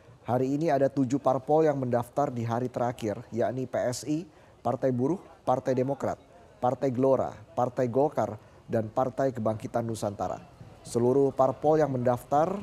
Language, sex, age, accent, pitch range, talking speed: Indonesian, male, 20-39, native, 115-135 Hz, 135 wpm